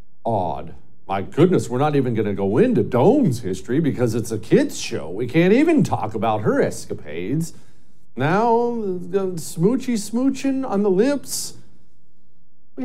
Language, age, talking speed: English, 50-69, 150 wpm